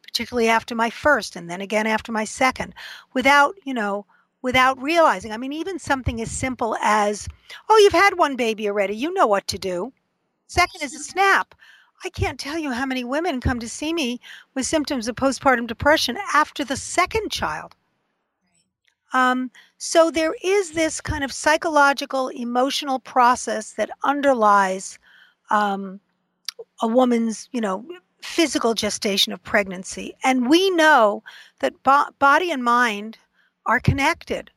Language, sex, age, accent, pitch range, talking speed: English, female, 50-69, American, 220-305 Hz, 150 wpm